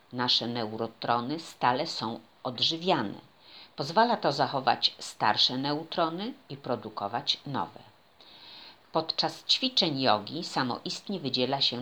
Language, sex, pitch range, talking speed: Polish, female, 120-165 Hz, 95 wpm